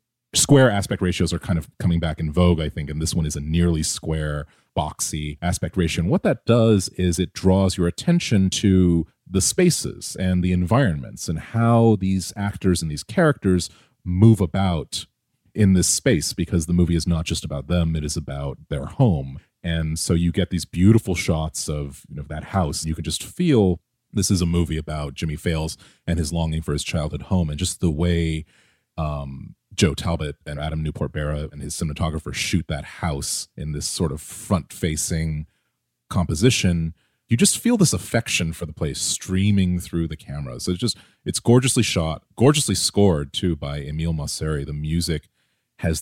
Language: English